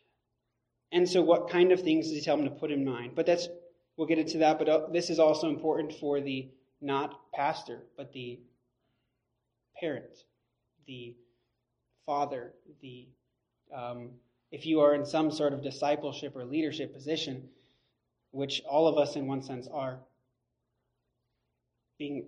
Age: 20-39